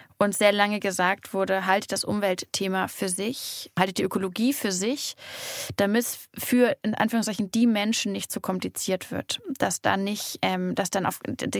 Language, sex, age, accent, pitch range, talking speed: German, female, 20-39, German, 200-245 Hz, 165 wpm